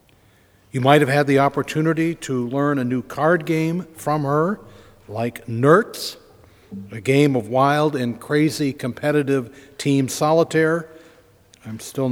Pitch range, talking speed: 115-140 Hz, 135 wpm